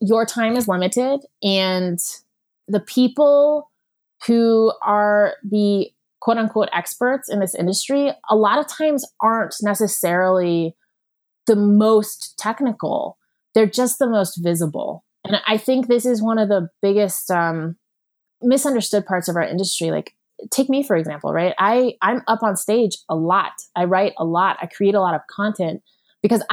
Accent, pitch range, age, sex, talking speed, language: American, 185-235 Hz, 20-39, female, 155 wpm, English